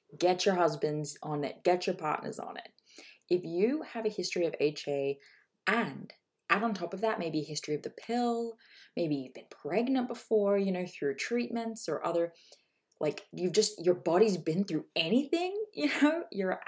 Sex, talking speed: female, 185 wpm